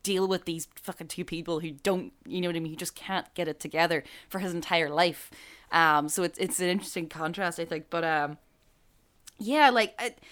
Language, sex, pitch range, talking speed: English, female, 155-190 Hz, 215 wpm